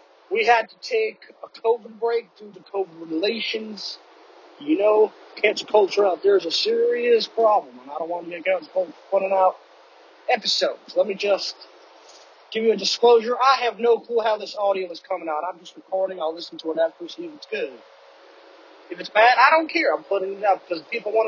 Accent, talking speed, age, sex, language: American, 210 wpm, 30-49, male, English